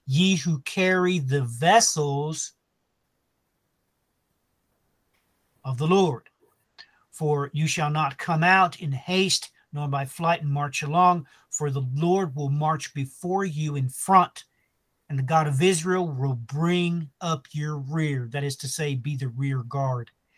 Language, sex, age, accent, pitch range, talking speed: English, male, 50-69, American, 135-165 Hz, 145 wpm